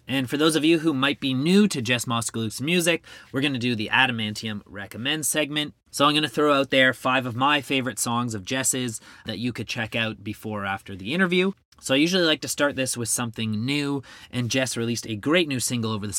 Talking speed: 235 wpm